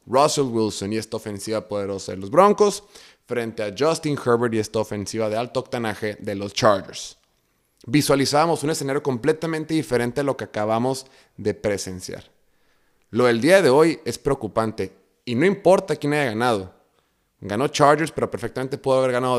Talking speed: 165 wpm